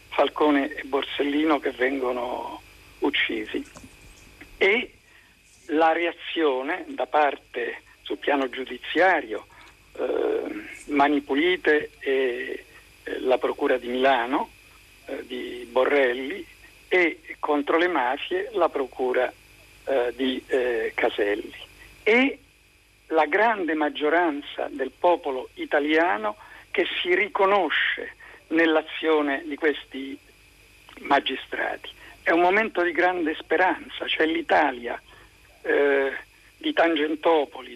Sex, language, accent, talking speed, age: male, Italian, native, 90 wpm, 50-69